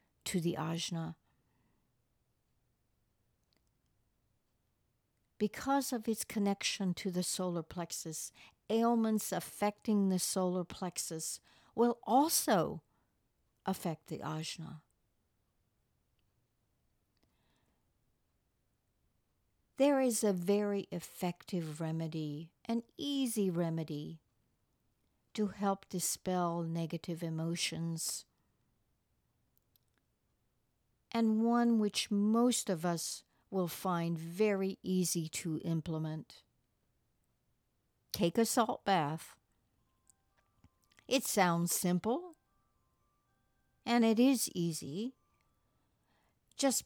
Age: 60-79